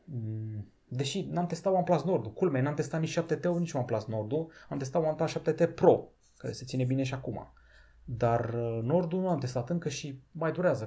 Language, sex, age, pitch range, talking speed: Romanian, male, 30-49, 120-165 Hz, 295 wpm